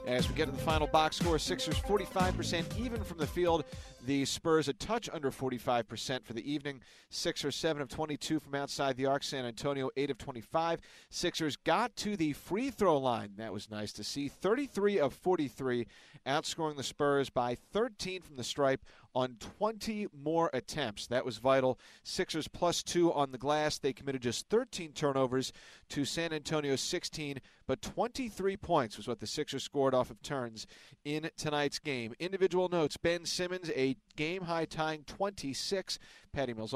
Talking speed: 175 wpm